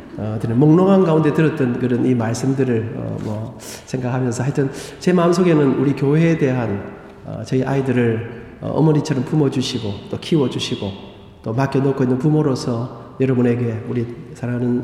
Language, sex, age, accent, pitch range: Korean, male, 40-59, native, 120-155 Hz